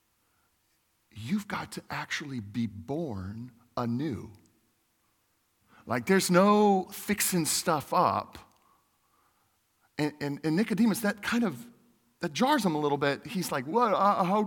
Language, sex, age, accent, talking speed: English, male, 40-59, American, 125 wpm